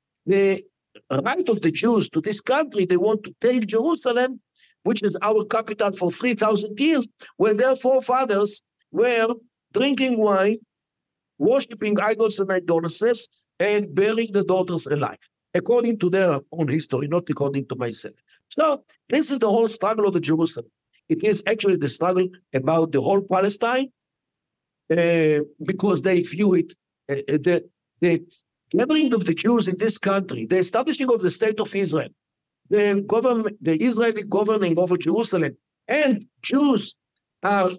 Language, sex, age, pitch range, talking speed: English, male, 60-79, 175-230 Hz, 150 wpm